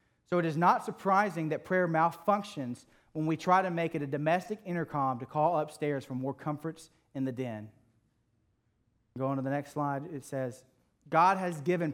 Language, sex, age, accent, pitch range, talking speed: English, male, 40-59, American, 125-165 Hz, 185 wpm